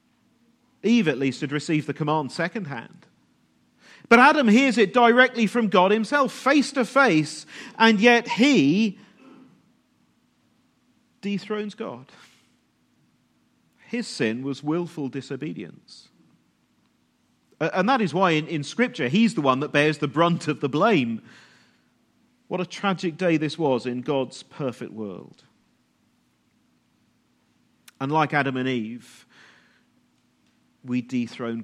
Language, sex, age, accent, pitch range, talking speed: English, male, 40-59, British, 130-200 Hz, 120 wpm